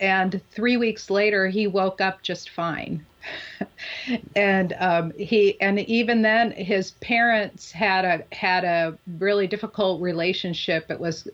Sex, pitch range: female, 165-200 Hz